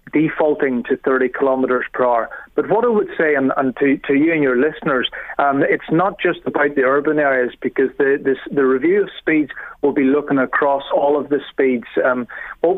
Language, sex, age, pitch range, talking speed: English, male, 30-49, 125-145 Hz, 205 wpm